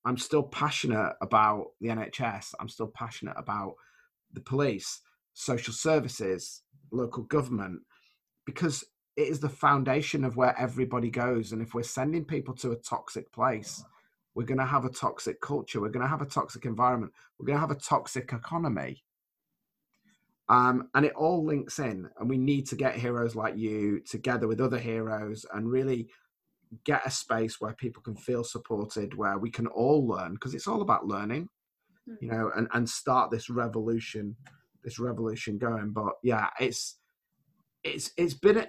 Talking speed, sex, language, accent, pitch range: 170 wpm, male, English, British, 115-145 Hz